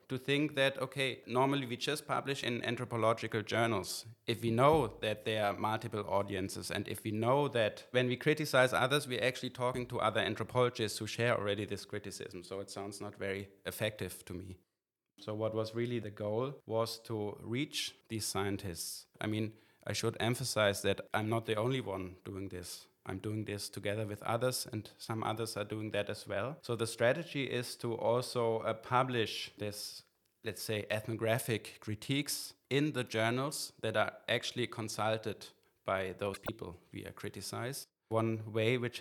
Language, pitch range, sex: English, 105-125 Hz, male